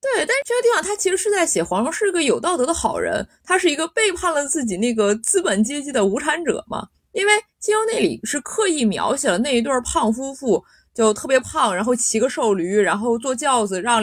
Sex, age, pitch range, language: female, 20-39, 215-345 Hz, Chinese